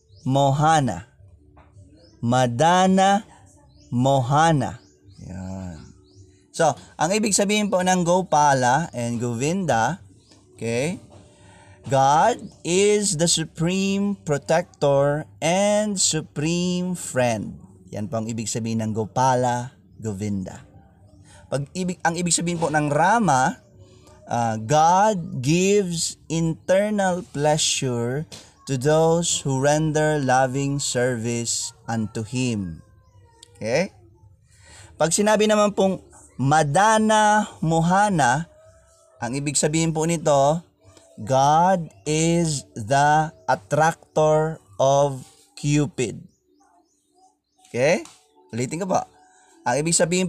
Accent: native